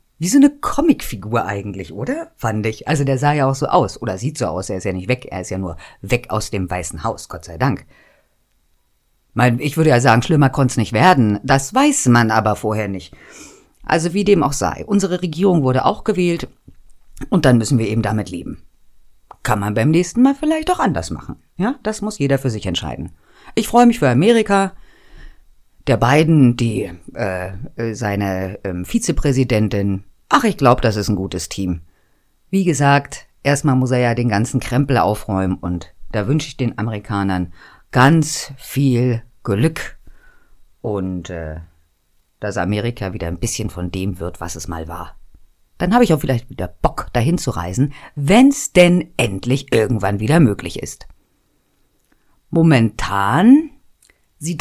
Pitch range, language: 95-150 Hz, German